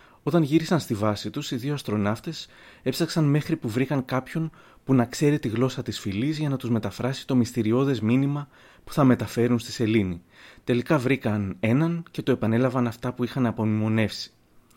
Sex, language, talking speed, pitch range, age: male, Greek, 170 wpm, 110-145 Hz, 30-49